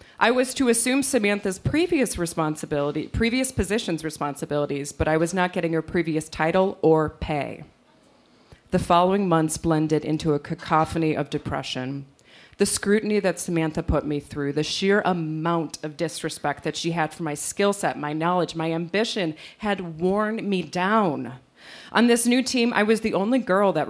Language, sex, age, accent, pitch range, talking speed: English, female, 30-49, American, 155-205 Hz, 165 wpm